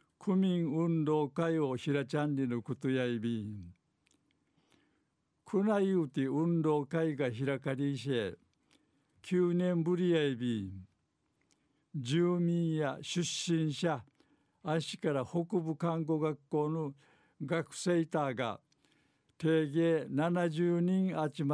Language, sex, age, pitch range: Japanese, male, 60-79, 140-170 Hz